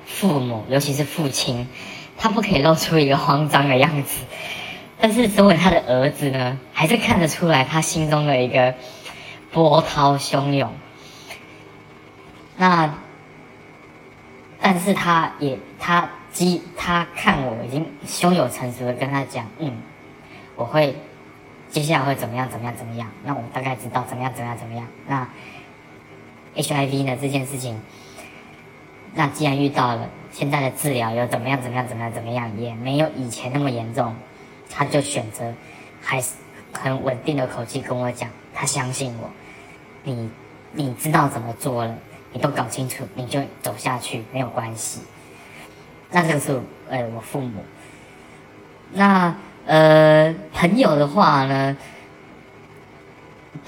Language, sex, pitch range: Chinese, male, 125-155 Hz